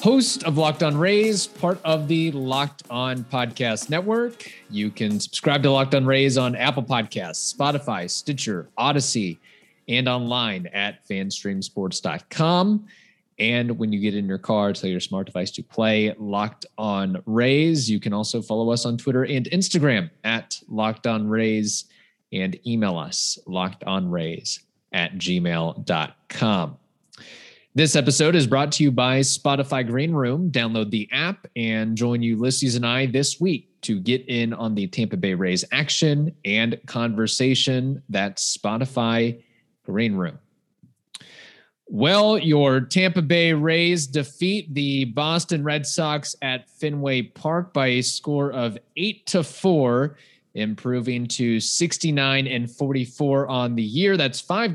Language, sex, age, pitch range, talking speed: English, male, 20-39, 110-155 Hz, 140 wpm